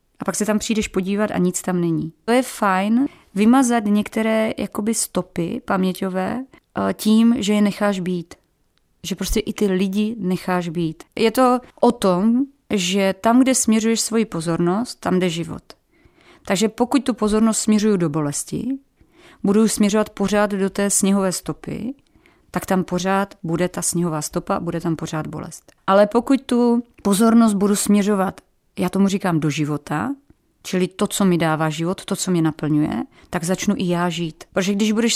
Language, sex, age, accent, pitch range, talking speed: Czech, female, 30-49, native, 180-220 Hz, 165 wpm